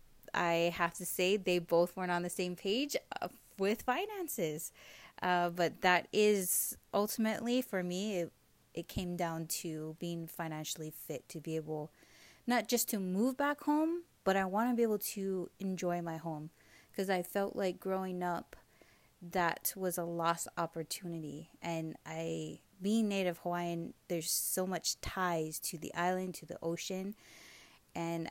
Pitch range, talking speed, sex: 165-195 Hz, 155 wpm, female